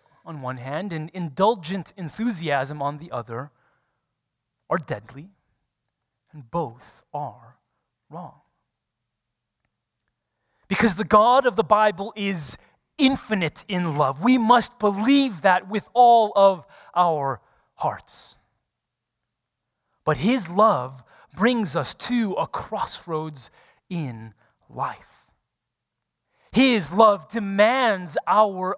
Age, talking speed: 30-49, 100 wpm